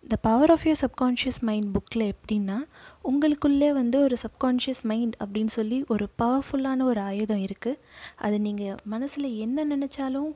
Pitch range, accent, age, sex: 215-260 Hz, native, 20-39, female